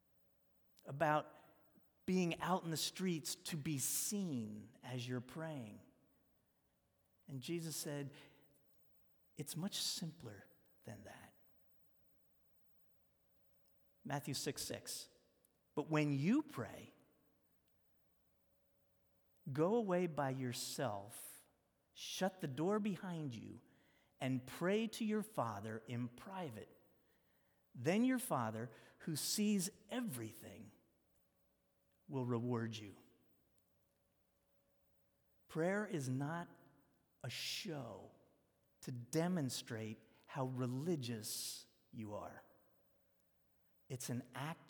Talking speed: 90 wpm